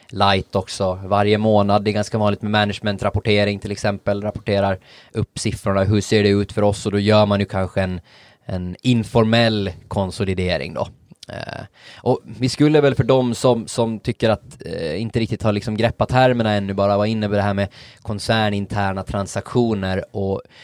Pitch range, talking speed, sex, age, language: 95-110 Hz, 175 wpm, male, 20-39, Swedish